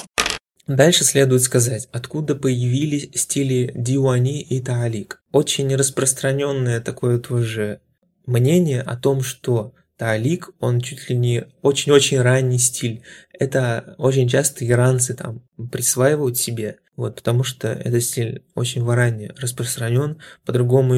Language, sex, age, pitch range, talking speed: Russian, male, 20-39, 120-140 Hz, 115 wpm